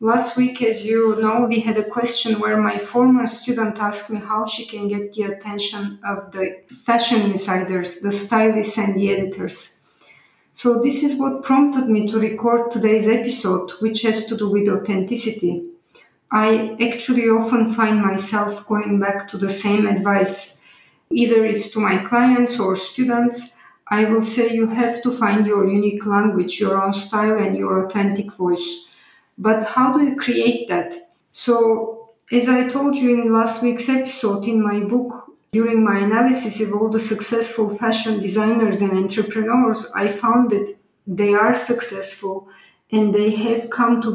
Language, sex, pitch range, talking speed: English, female, 200-230 Hz, 165 wpm